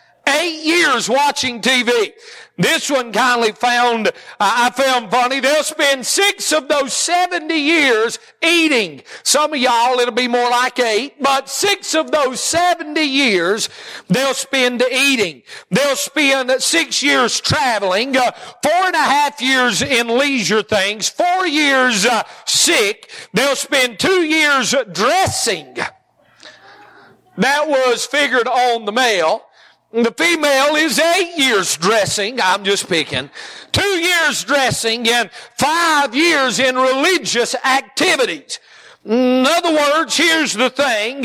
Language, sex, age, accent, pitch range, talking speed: English, male, 50-69, American, 245-315 Hz, 130 wpm